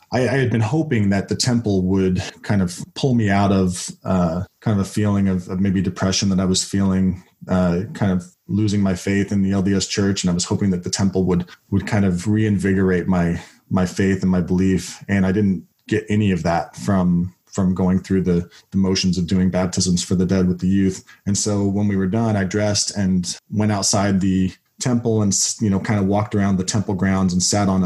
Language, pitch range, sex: English, 95-105 Hz, male